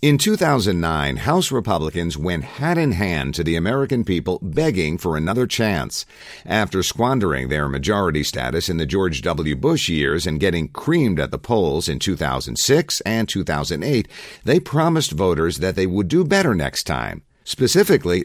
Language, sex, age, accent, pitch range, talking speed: English, male, 50-69, American, 80-115 Hz, 160 wpm